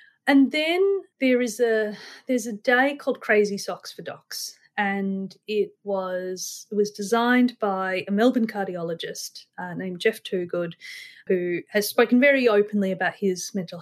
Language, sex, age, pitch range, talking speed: English, female, 30-49, 185-240 Hz, 150 wpm